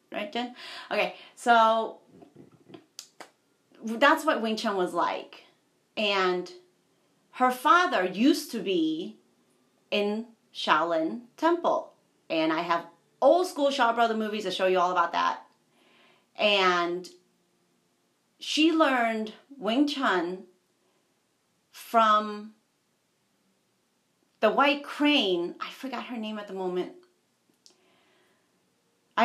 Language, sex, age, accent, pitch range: Japanese, female, 40-59, American, 190-300 Hz